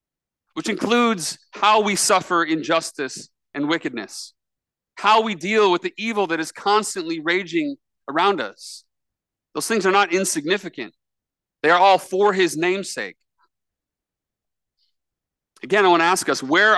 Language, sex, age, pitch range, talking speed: English, male, 40-59, 150-200 Hz, 135 wpm